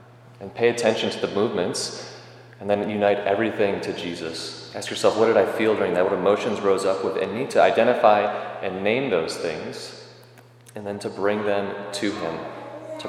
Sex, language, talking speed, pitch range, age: male, English, 185 wpm, 95-115 Hz, 30-49